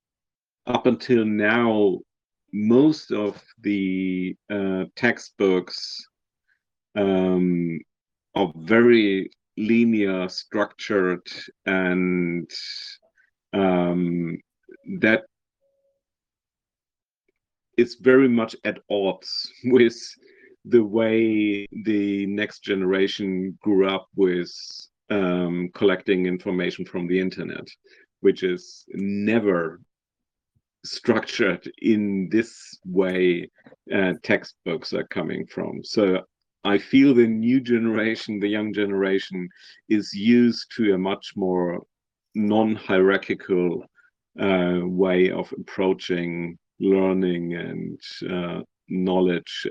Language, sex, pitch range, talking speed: Russian, male, 90-115 Hz, 85 wpm